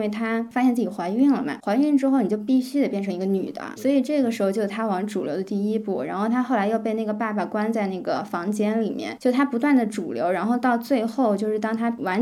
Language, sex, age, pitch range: Chinese, female, 20-39, 200-245 Hz